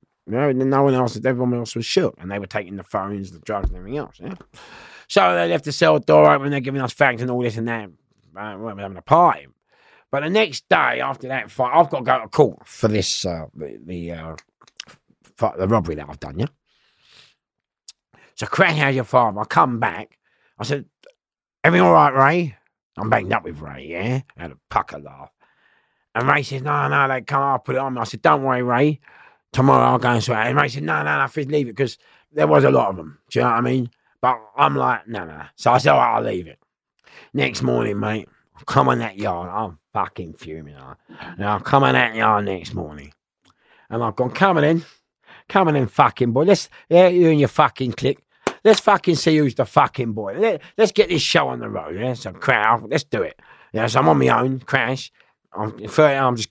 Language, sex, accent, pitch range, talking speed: English, male, British, 100-140 Hz, 235 wpm